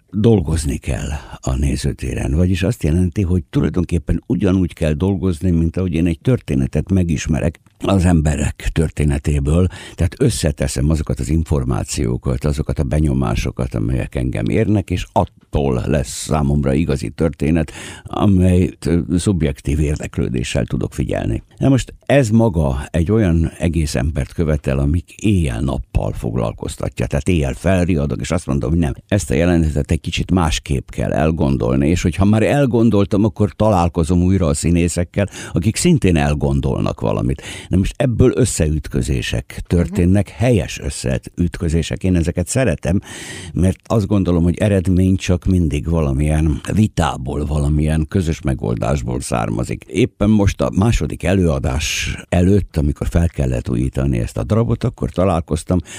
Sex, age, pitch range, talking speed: male, 60-79, 75-95 Hz, 130 wpm